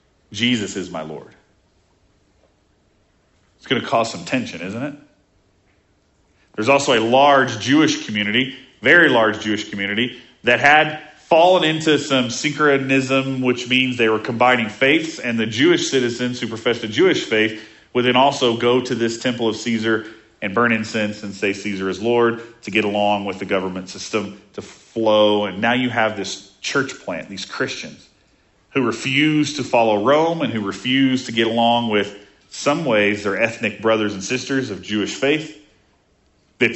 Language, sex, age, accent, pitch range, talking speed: English, male, 40-59, American, 105-135 Hz, 165 wpm